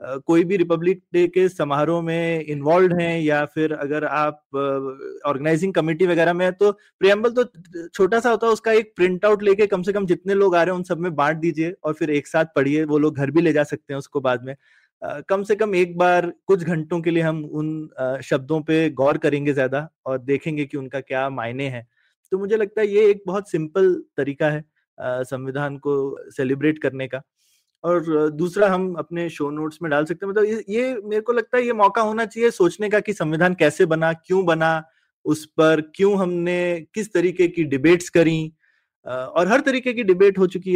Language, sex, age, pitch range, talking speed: Hindi, male, 20-39, 150-185 Hz, 215 wpm